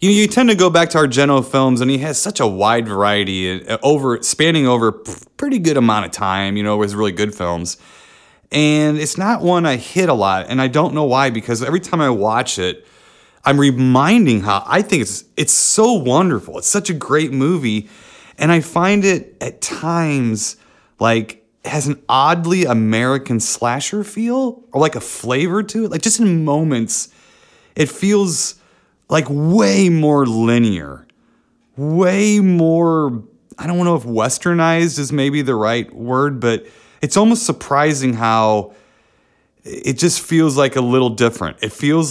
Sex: male